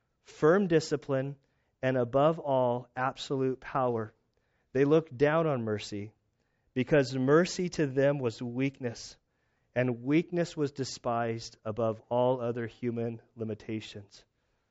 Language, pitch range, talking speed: English, 125-165 Hz, 110 wpm